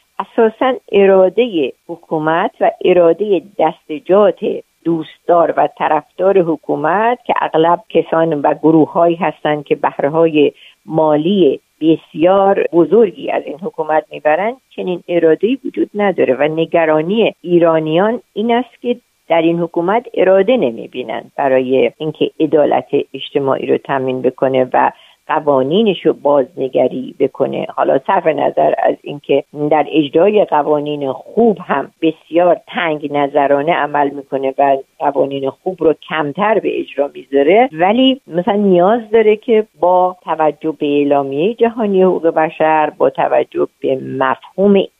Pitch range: 150-205 Hz